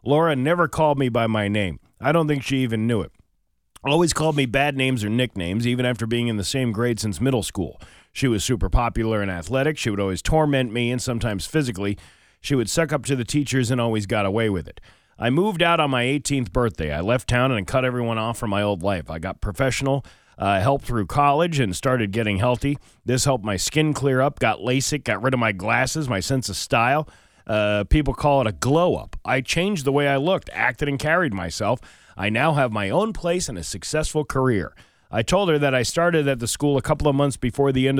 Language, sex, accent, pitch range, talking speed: English, male, American, 105-140 Hz, 230 wpm